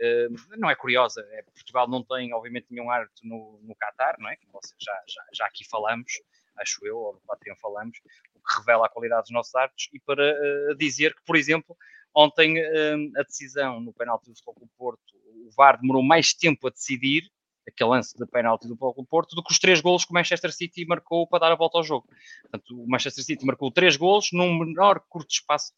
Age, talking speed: 20-39, 215 wpm